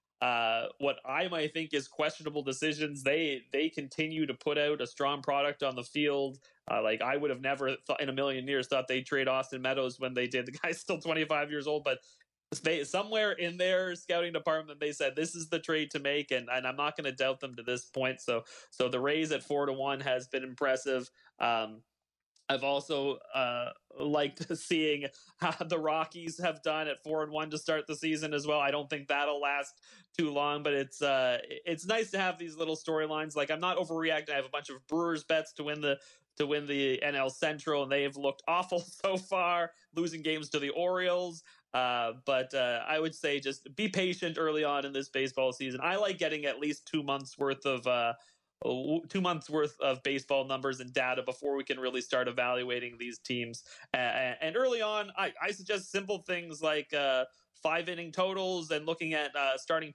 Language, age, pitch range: English, 30-49, 135-160 Hz